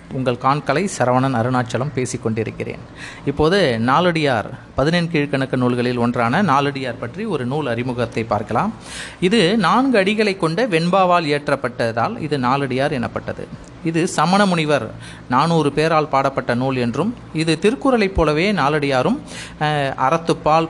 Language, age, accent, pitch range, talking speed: Tamil, 30-49, native, 130-170 Hz, 115 wpm